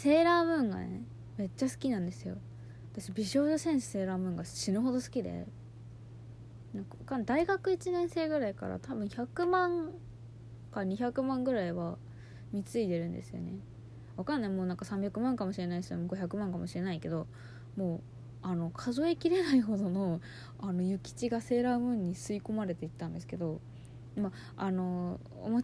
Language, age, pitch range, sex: Japanese, 20-39, 155-245 Hz, female